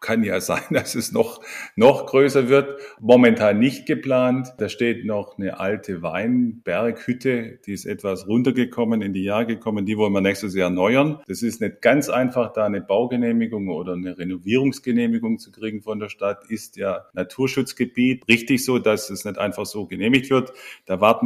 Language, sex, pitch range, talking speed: German, male, 100-125 Hz, 175 wpm